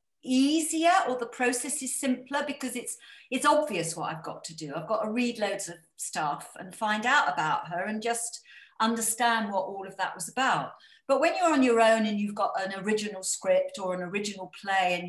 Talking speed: 210 wpm